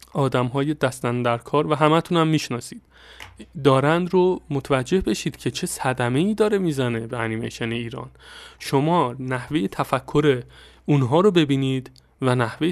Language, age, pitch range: Persian, 30-49, 125-160 Hz